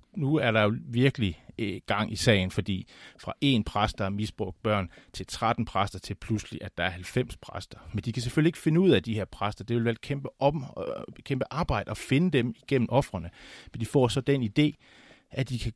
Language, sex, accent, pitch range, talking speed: Danish, male, native, 100-125 Hz, 220 wpm